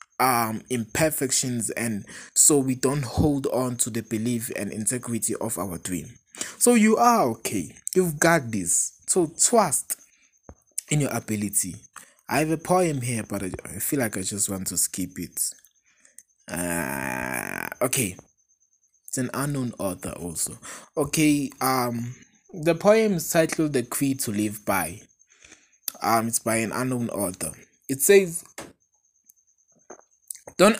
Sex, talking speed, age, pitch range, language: male, 135 wpm, 20-39, 105-150 Hz, English